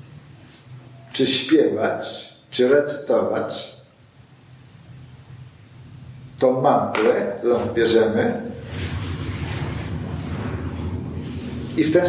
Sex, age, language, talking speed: male, 60-79, Polish, 55 wpm